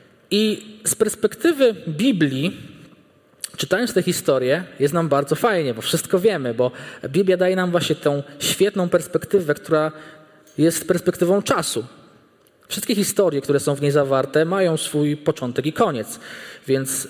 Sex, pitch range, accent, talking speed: male, 150-190 Hz, native, 135 wpm